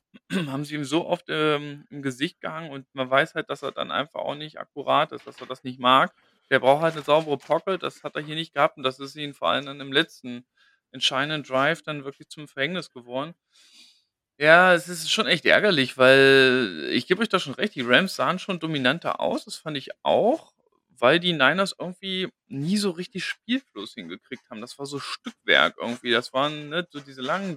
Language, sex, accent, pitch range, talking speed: German, male, German, 135-175 Hz, 215 wpm